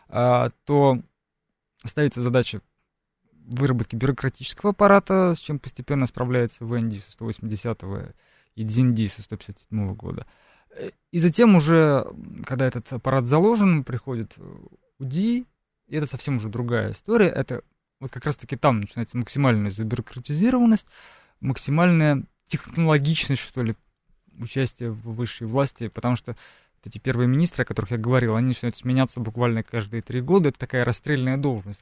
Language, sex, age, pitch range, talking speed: Russian, male, 20-39, 115-145 Hz, 130 wpm